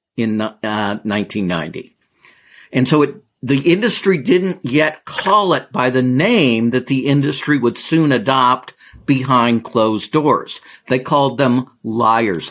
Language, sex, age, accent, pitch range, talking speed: English, male, 50-69, American, 125-170 Hz, 135 wpm